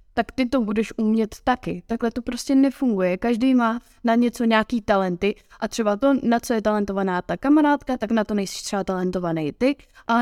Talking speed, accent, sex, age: 195 wpm, native, female, 20-39